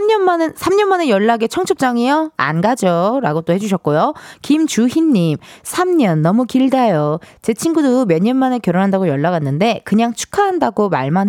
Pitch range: 185-305 Hz